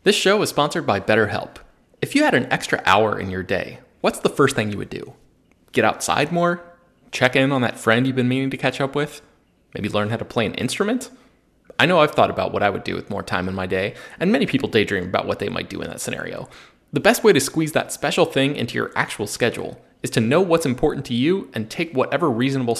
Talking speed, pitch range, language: 245 wpm, 115-150 Hz, English